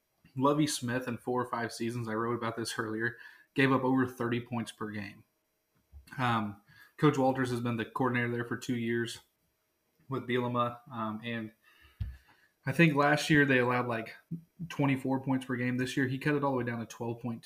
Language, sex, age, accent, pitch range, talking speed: English, male, 20-39, American, 115-125 Hz, 190 wpm